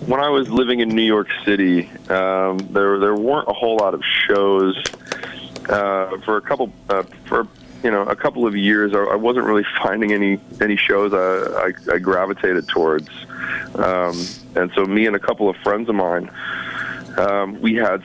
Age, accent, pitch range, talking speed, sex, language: 40-59, American, 95-105 Hz, 185 wpm, male, English